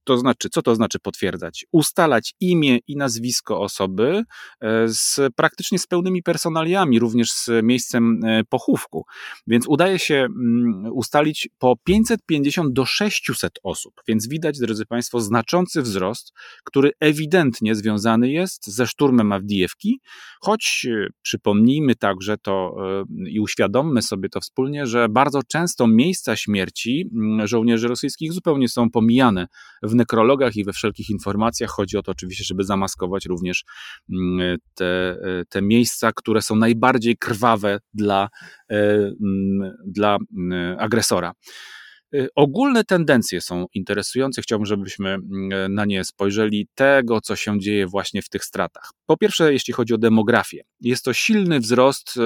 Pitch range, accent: 105-135 Hz, native